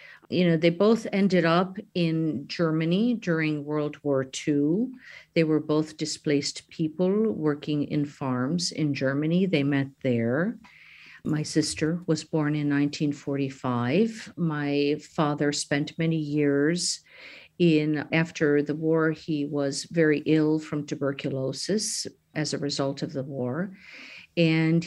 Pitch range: 145-170 Hz